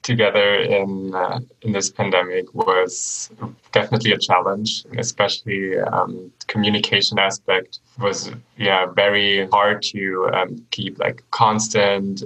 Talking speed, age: 115 wpm, 20-39